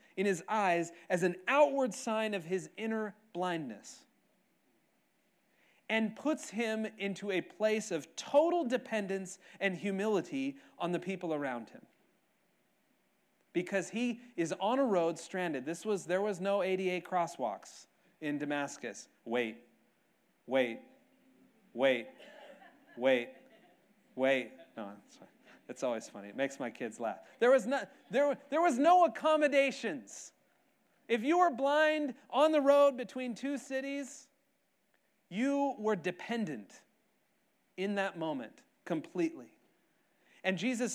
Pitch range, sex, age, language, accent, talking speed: 180-265 Hz, male, 40-59, English, American, 120 wpm